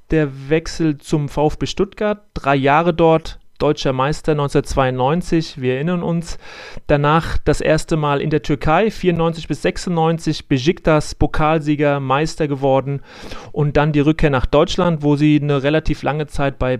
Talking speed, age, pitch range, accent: 145 wpm, 40-59, 140-170 Hz, German